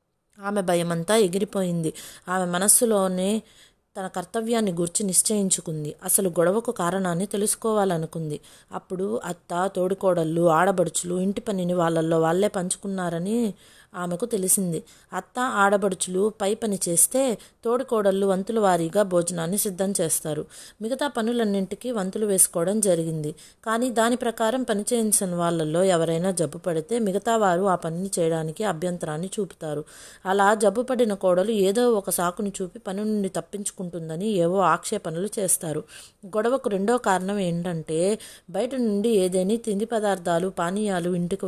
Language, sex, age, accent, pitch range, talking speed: Telugu, female, 20-39, native, 175-210 Hz, 115 wpm